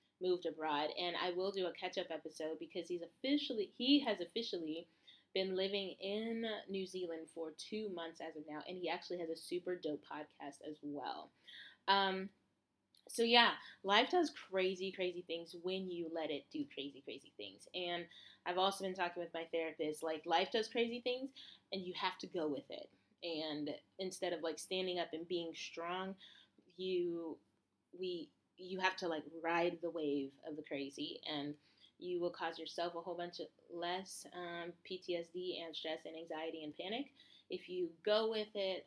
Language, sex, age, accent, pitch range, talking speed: English, female, 20-39, American, 165-205 Hz, 180 wpm